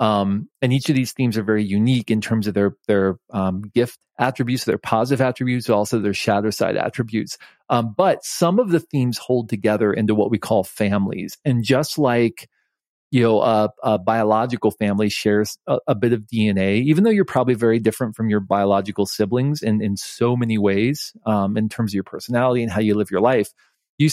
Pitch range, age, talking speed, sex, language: 105-125 Hz, 40-59, 200 wpm, male, English